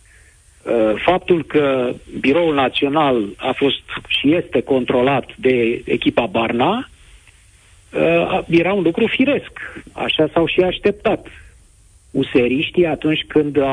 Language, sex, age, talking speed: Romanian, male, 60-79, 105 wpm